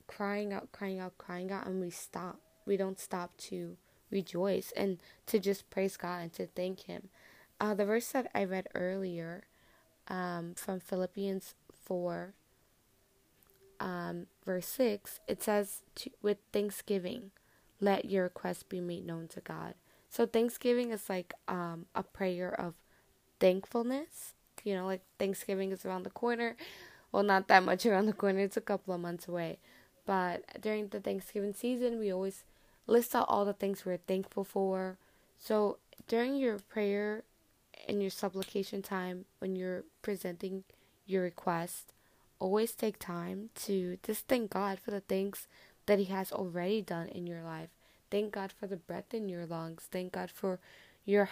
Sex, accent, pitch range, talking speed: female, American, 185-215 Hz, 160 wpm